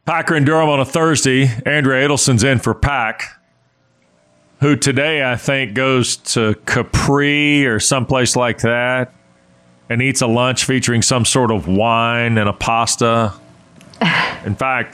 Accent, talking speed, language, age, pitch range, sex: American, 145 wpm, English, 40-59, 110-145 Hz, male